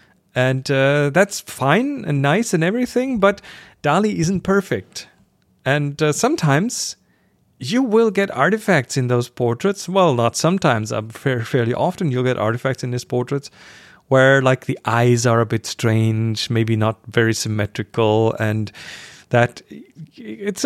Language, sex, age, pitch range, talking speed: English, male, 40-59, 125-170 Hz, 145 wpm